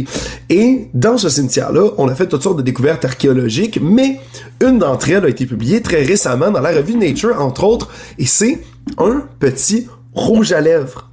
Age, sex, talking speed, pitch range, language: 30-49, male, 185 wpm, 130-190 Hz, French